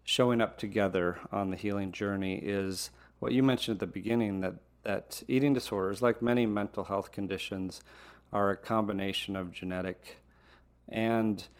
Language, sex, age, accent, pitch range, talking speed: English, male, 40-59, American, 95-110 Hz, 150 wpm